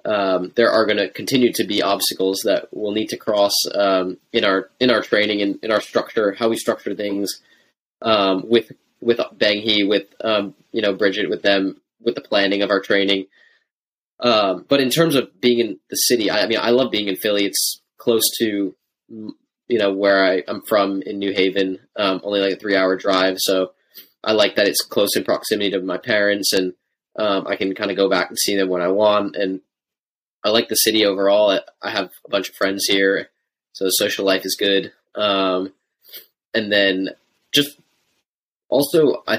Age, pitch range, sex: 20-39, 95-110 Hz, male